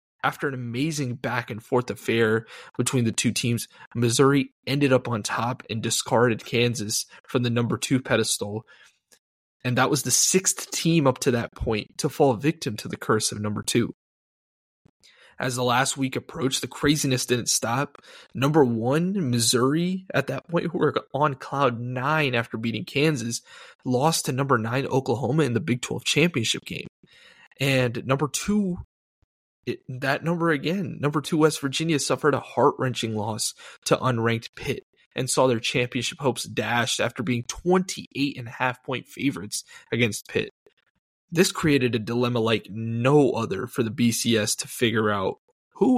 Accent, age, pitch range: American, 20-39, 115-145 Hz